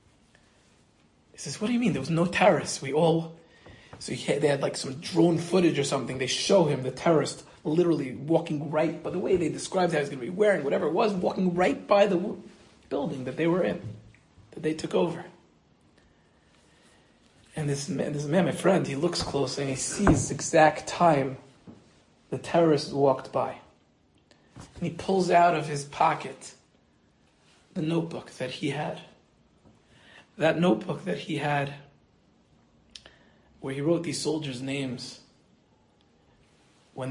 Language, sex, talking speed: English, male, 160 wpm